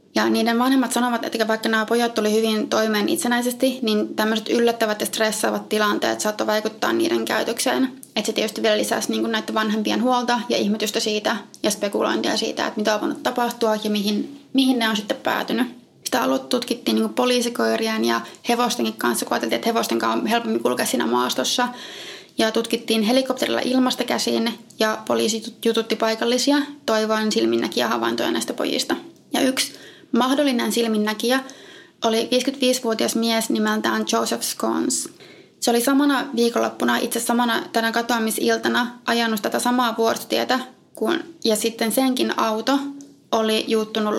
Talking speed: 145 wpm